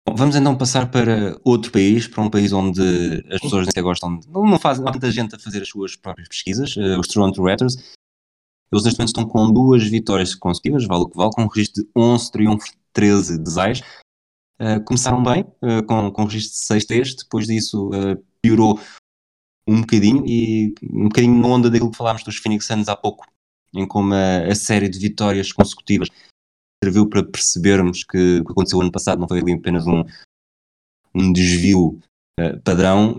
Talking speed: 185 wpm